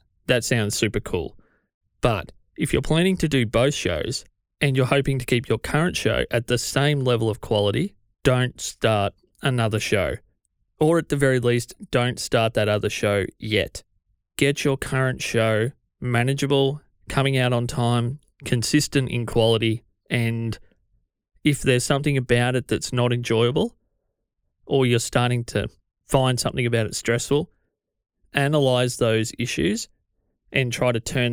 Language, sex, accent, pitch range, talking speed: English, male, Australian, 110-135 Hz, 150 wpm